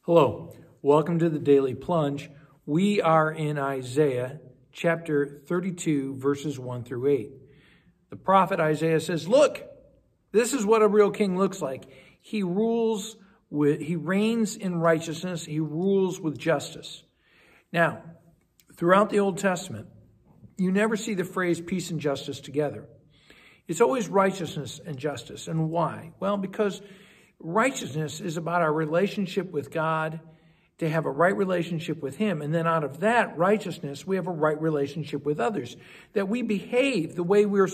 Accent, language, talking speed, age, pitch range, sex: American, English, 155 wpm, 60-79, 155-195 Hz, male